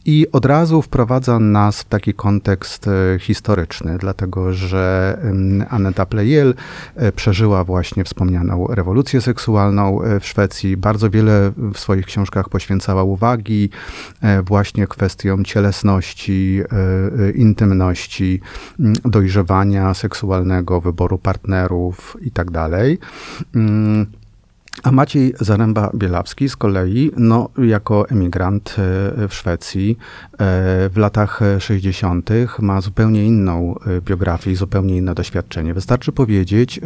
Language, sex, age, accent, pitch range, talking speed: Polish, male, 30-49, native, 95-110 Hz, 100 wpm